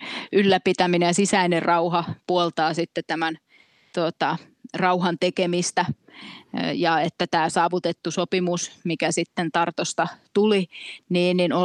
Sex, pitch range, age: female, 170-190 Hz, 20-39